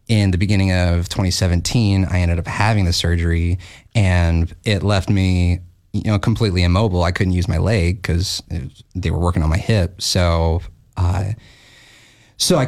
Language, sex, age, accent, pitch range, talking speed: English, male, 30-49, American, 90-110 Hz, 165 wpm